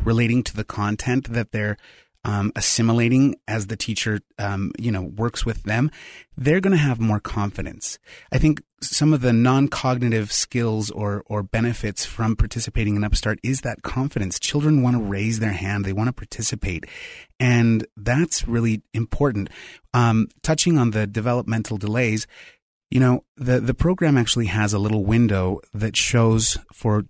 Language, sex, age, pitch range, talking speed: English, male, 30-49, 105-125 Hz, 160 wpm